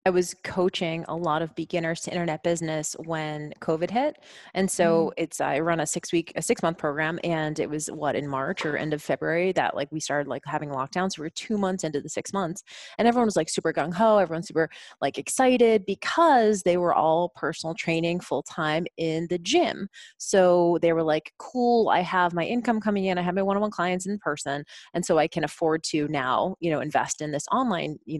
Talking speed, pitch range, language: 215 wpm, 160-200 Hz, English